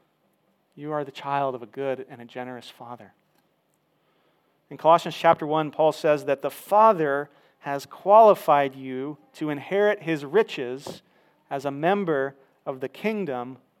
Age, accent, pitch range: 40-59, American, 145-210 Hz